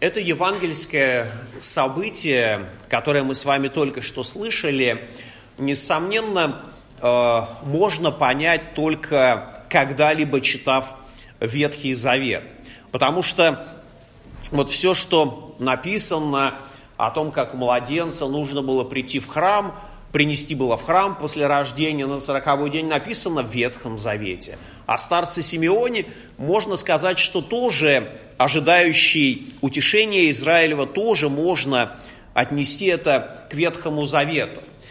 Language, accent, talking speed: Russian, native, 110 wpm